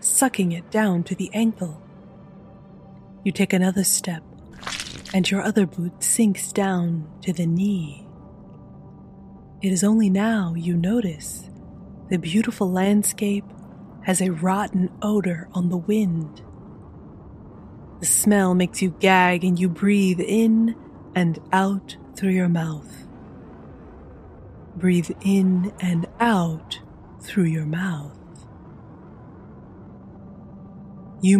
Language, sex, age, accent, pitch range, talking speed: English, female, 30-49, American, 175-200 Hz, 110 wpm